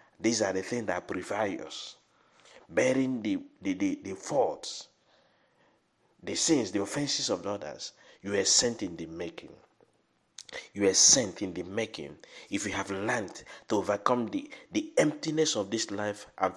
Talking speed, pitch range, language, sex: 160 wpm, 95-140 Hz, English, male